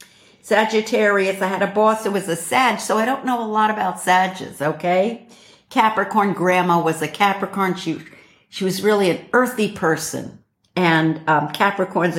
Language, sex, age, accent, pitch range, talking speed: English, female, 60-79, American, 155-205 Hz, 160 wpm